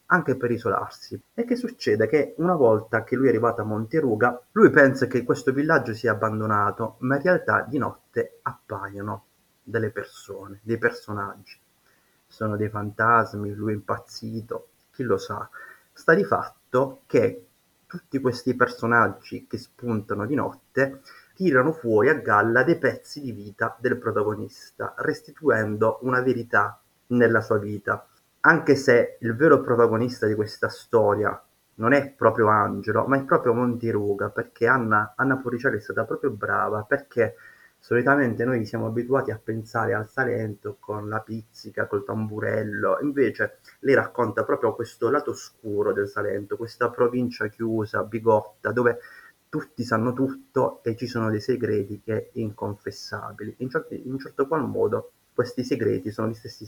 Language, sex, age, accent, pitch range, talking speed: Italian, male, 30-49, native, 110-135 Hz, 150 wpm